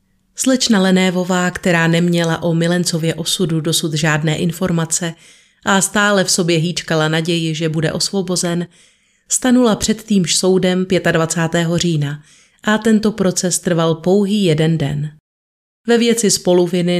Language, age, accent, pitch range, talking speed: Czech, 30-49, native, 165-190 Hz, 125 wpm